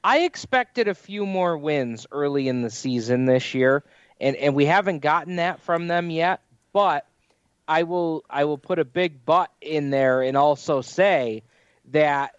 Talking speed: 175 wpm